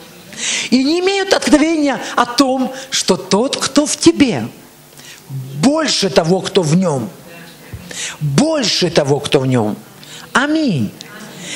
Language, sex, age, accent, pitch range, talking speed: Russian, male, 50-69, native, 165-260 Hz, 115 wpm